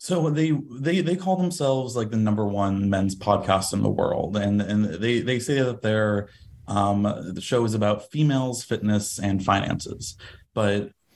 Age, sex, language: 20-39, male, English